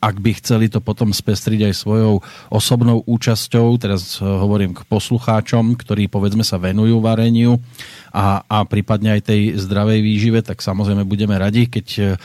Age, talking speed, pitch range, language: 40-59, 150 wpm, 100-115 Hz, Slovak